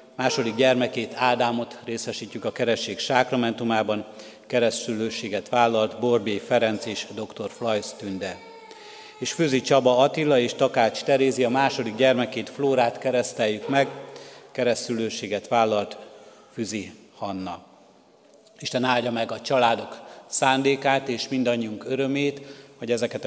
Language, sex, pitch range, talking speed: Hungarian, male, 115-130 Hz, 110 wpm